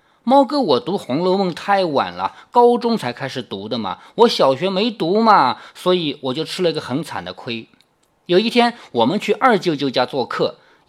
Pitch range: 155-245 Hz